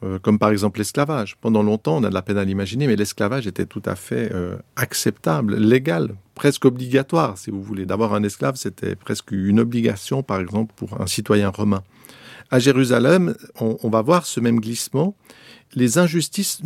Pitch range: 110-140 Hz